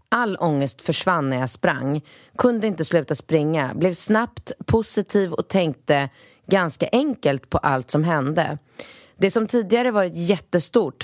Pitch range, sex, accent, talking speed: 140-200 Hz, female, native, 140 wpm